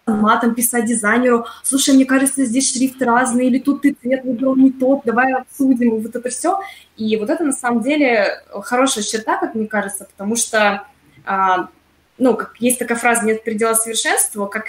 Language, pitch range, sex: Russian, 200-245 Hz, female